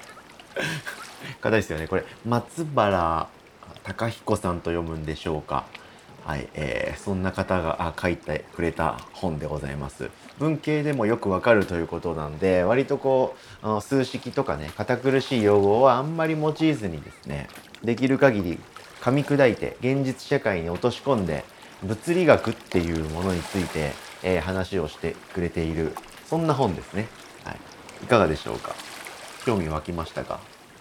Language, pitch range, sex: Japanese, 85-135 Hz, male